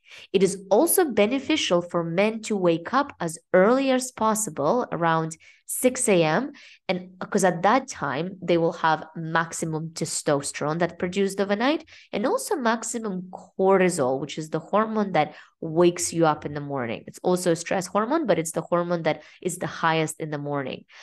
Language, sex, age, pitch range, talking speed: English, female, 20-39, 160-215 Hz, 170 wpm